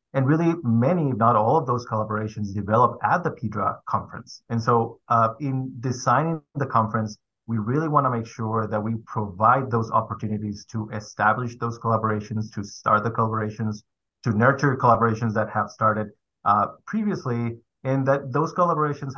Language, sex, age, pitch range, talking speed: English, male, 30-49, 110-130 Hz, 165 wpm